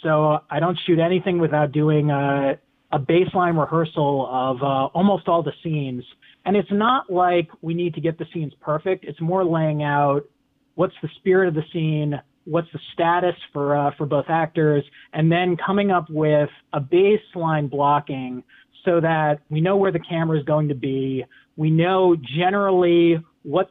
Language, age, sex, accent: English, 30-49, male, American